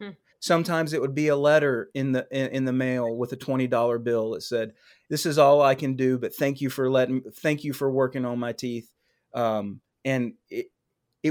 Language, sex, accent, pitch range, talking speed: English, male, American, 130-160 Hz, 205 wpm